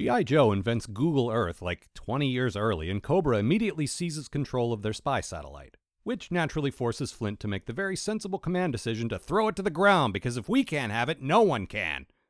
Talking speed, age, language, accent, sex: 215 wpm, 40-59, English, American, male